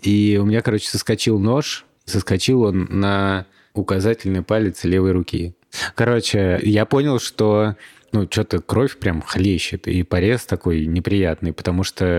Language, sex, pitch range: Russian, male, 90-115 Hz